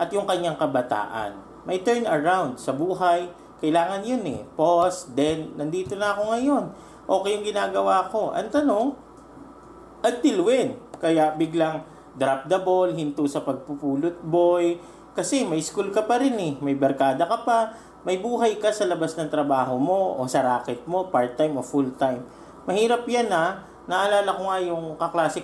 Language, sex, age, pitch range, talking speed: English, male, 40-59, 145-210 Hz, 165 wpm